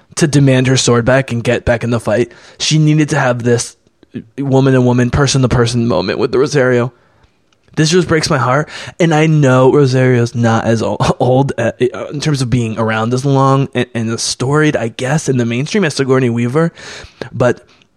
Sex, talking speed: male, 180 wpm